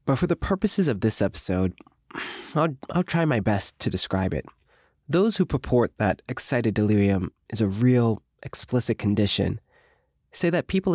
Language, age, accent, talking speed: English, 20-39, American, 160 wpm